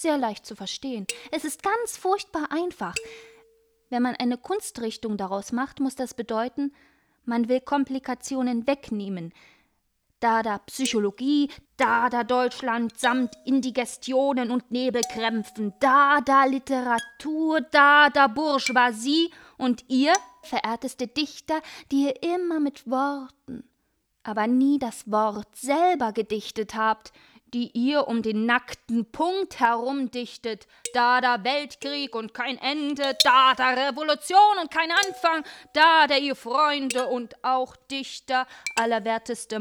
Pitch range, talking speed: 245-310 Hz, 125 wpm